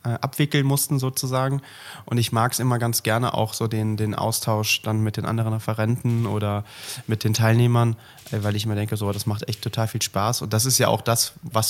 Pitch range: 110-130 Hz